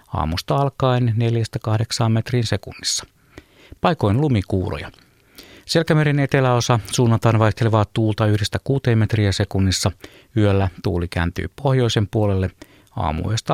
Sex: male